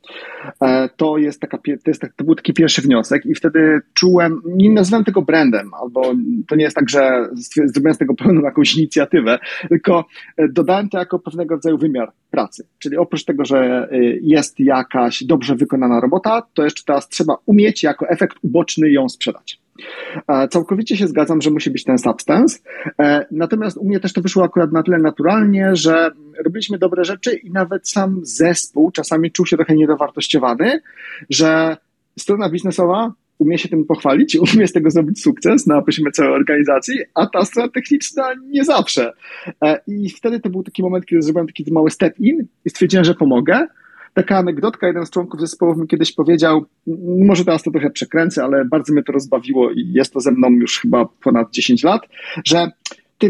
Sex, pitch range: male, 155-215 Hz